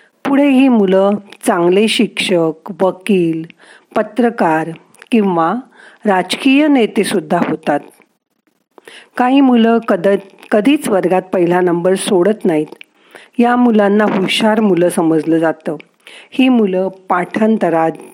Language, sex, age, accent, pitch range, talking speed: Marathi, female, 50-69, native, 175-235 Hz, 95 wpm